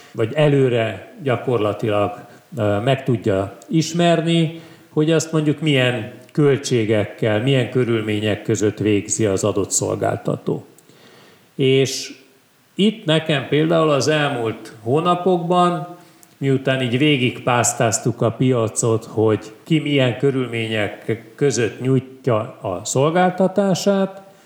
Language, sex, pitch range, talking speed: Hungarian, male, 115-155 Hz, 95 wpm